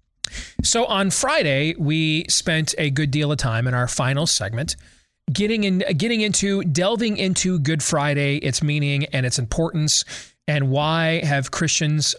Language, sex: English, male